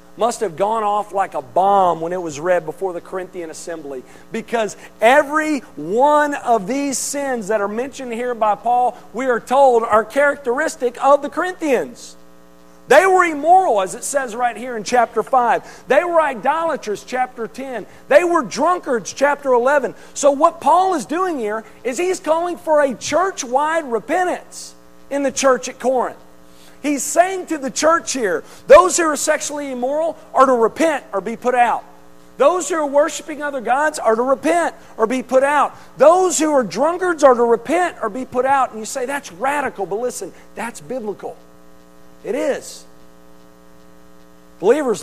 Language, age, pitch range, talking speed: English, 50-69, 180-285 Hz, 170 wpm